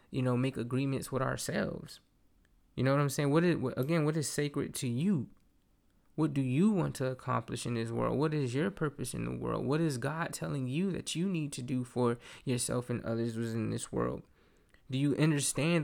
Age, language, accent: 20-39, English, American